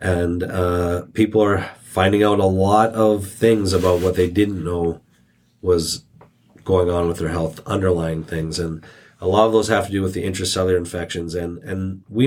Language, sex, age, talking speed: English, male, 30-49, 185 wpm